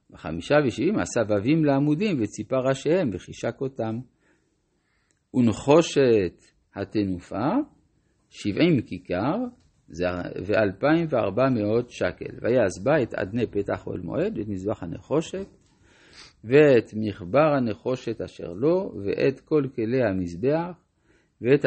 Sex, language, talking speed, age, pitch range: male, Hebrew, 105 wpm, 50-69, 105-155 Hz